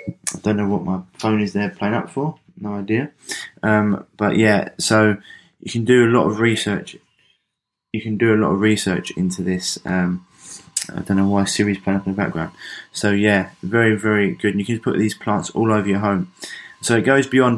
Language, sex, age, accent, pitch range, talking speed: English, male, 20-39, British, 95-110 Hz, 215 wpm